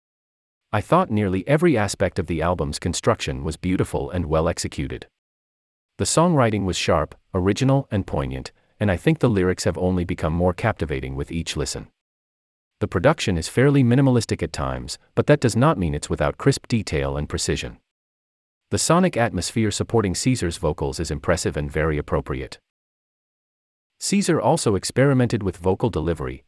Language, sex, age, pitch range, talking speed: English, male, 40-59, 75-120 Hz, 155 wpm